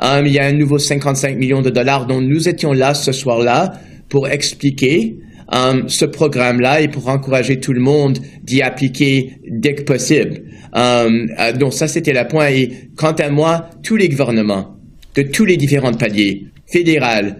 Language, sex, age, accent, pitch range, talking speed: French, male, 30-49, French, 130-150 Hz, 180 wpm